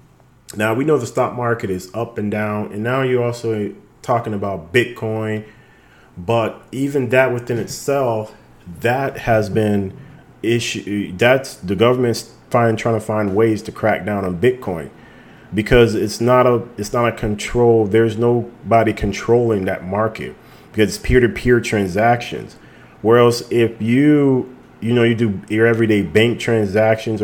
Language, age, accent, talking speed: English, 30-49, American, 145 wpm